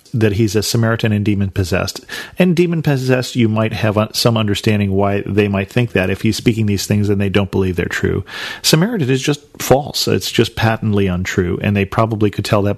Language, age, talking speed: English, 40-59, 200 wpm